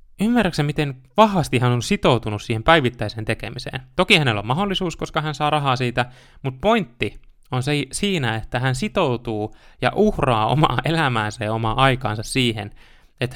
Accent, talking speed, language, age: native, 155 wpm, Finnish, 20-39